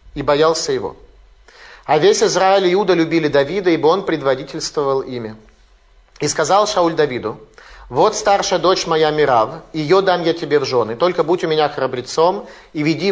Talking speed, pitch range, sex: 165 wpm, 135-175 Hz, male